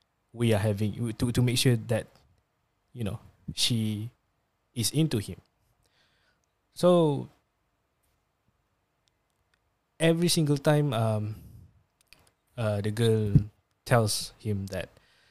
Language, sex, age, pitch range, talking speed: Malay, male, 20-39, 105-125 Hz, 100 wpm